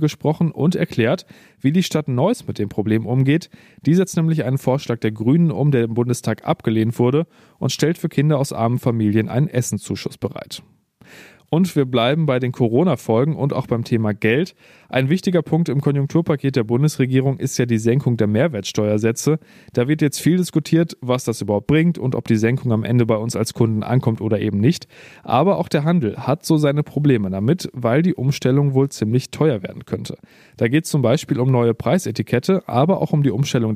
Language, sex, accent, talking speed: German, male, German, 195 wpm